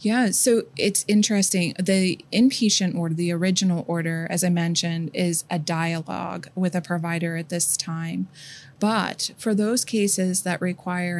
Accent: American